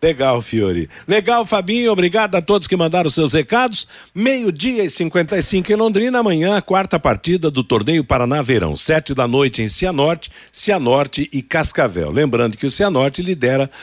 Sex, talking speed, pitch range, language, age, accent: male, 155 wpm, 130-180 Hz, Portuguese, 60-79, Brazilian